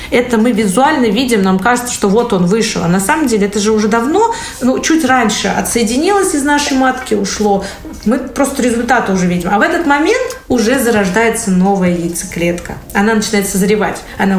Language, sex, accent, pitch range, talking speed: Russian, female, native, 185-245 Hz, 180 wpm